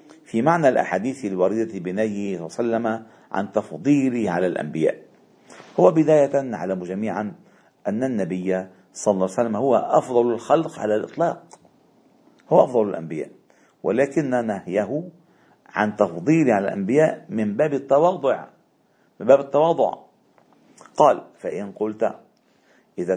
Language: Arabic